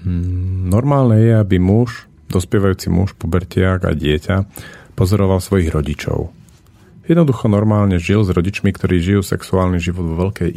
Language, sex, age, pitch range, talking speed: Slovak, male, 40-59, 85-105 Hz, 130 wpm